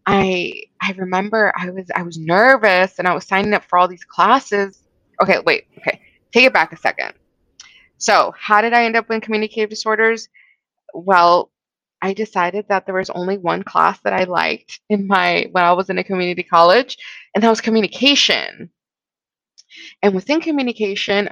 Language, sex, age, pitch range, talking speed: English, female, 20-39, 190-275 Hz, 175 wpm